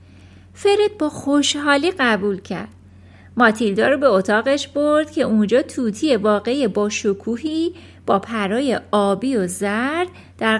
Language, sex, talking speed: Persian, female, 125 wpm